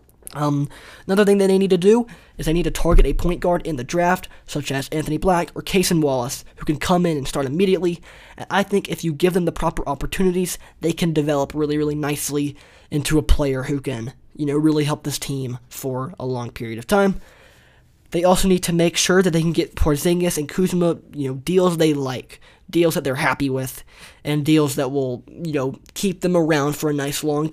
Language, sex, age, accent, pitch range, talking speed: English, male, 20-39, American, 135-170 Hz, 220 wpm